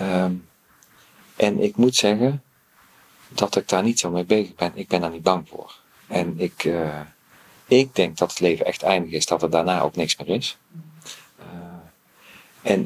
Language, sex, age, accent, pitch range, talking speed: Dutch, male, 40-59, Dutch, 80-95 Hz, 175 wpm